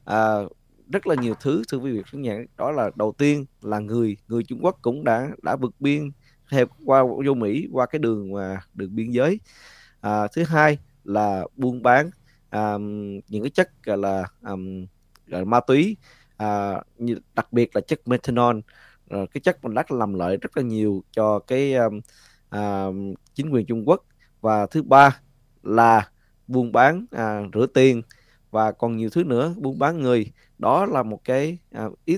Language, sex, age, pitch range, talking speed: Vietnamese, male, 20-39, 105-135 Hz, 175 wpm